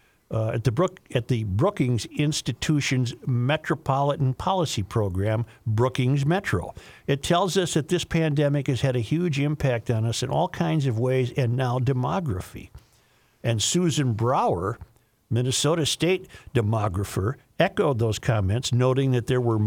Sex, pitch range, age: male, 110-140 Hz, 50-69